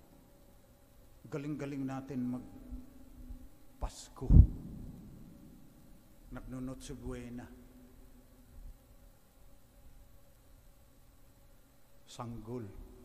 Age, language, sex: 50-69, English, male